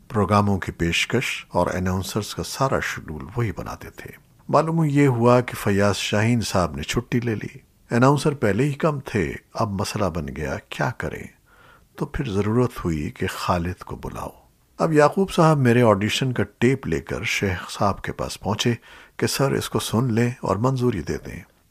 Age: 50-69